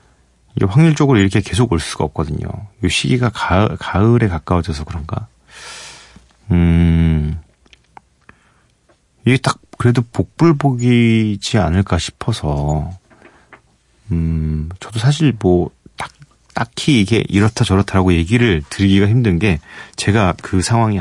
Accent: native